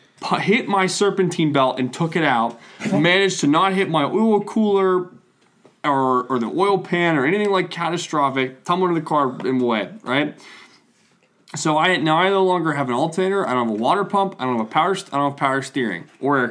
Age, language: 20-39, English